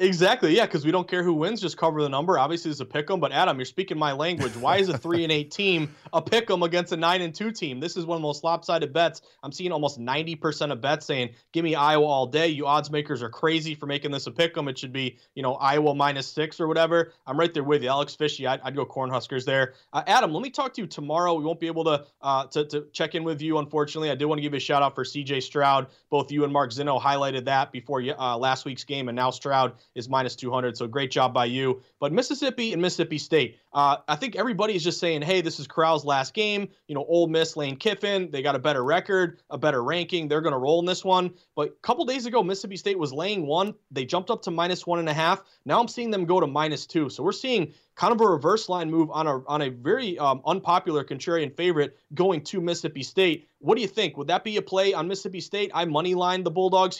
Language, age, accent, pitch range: English, 30-49, American, 140-180 Hz